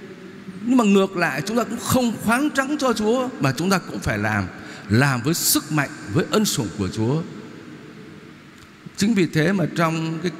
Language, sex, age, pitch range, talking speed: Vietnamese, male, 60-79, 145-205 Hz, 190 wpm